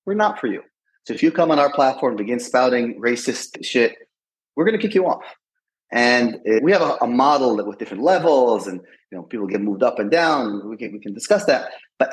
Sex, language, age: male, English, 30-49